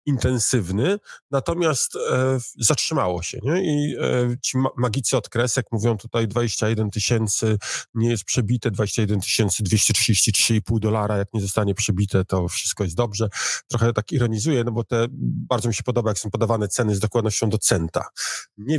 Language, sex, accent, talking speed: Polish, male, native, 155 wpm